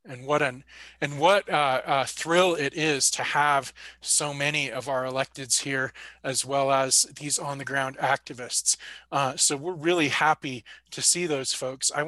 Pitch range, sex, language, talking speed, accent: 130-150 Hz, male, English, 180 wpm, American